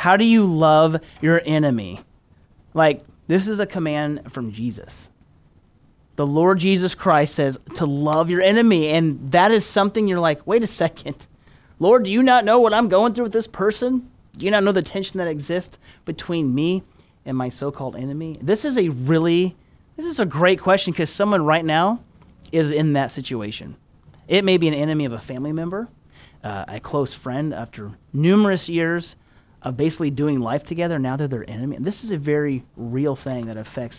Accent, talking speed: American, 190 wpm